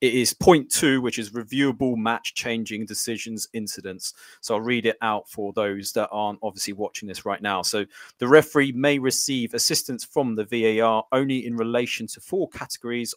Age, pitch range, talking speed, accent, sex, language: 30-49, 110-130 Hz, 180 wpm, British, male, English